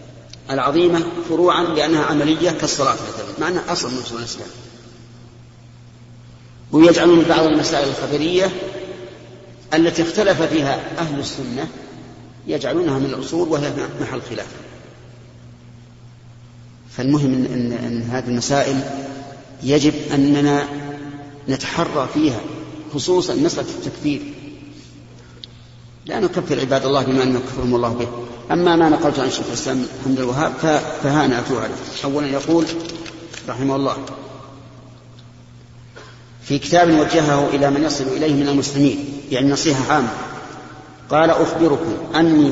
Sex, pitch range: male, 125-155 Hz